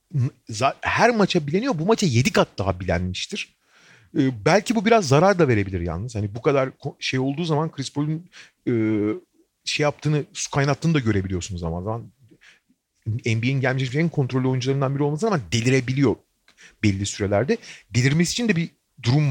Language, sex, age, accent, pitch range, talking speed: Turkish, male, 40-59, native, 120-190 Hz, 150 wpm